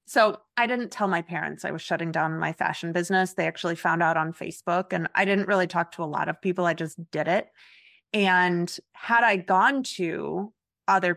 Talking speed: 210 wpm